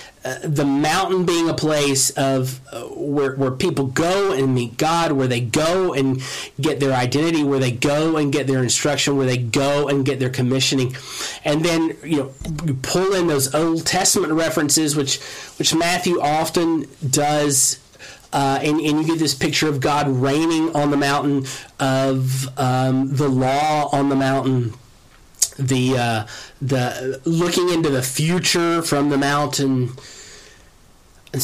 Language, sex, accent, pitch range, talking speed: English, male, American, 130-155 Hz, 155 wpm